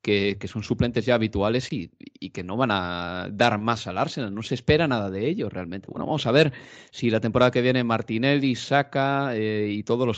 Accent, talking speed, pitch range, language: Spanish, 225 wpm, 115-150 Hz, Spanish